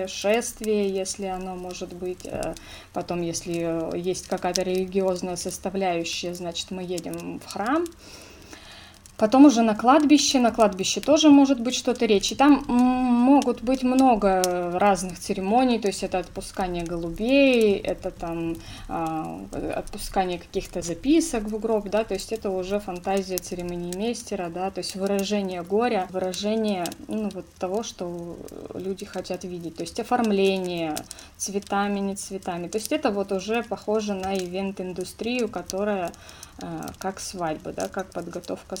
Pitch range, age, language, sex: 180-225 Hz, 20-39, Russian, female